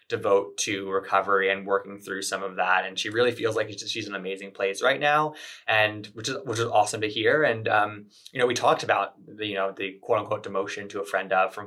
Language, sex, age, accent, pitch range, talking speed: English, male, 20-39, American, 100-125 Hz, 250 wpm